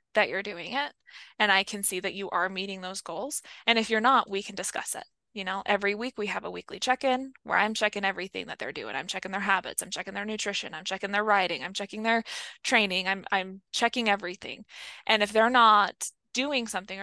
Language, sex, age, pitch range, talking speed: English, female, 20-39, 195-240 Hz, 225 wpm